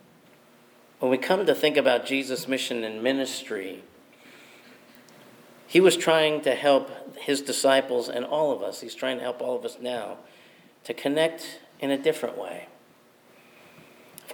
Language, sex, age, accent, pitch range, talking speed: English, male, 50-69, American, 120-150 Hz, 150 wpm